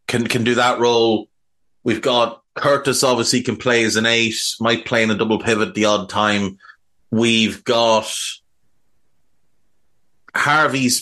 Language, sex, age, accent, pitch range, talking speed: English, male, 30-49, Irish, 110-135 Hz, 140 wpm